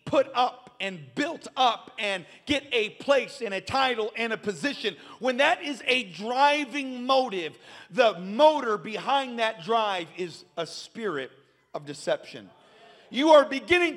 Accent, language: American, English